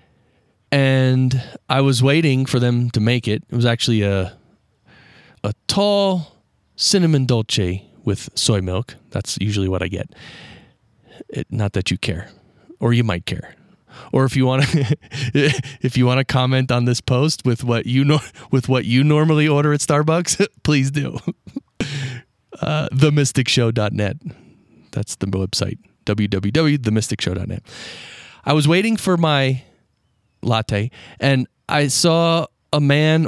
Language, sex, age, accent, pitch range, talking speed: English, male, 30-49, American, 110-150 Hz, 140 wpm